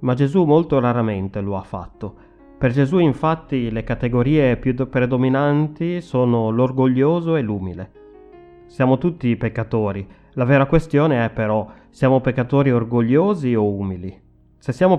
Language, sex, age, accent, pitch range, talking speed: Italian, male, 30-49, native, 110-135 Hz, 135 wpm